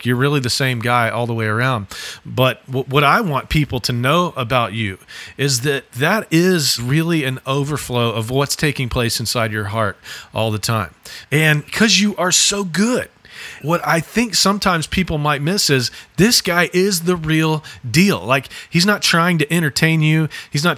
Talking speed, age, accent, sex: 185 wpm, 40-59, American, male